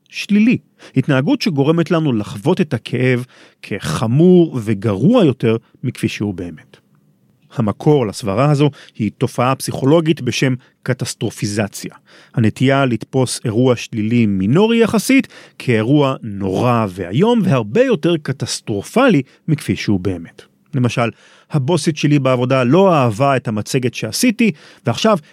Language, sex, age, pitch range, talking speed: Hebrew, male, 40-59, 115-175 Hz, 110 wpm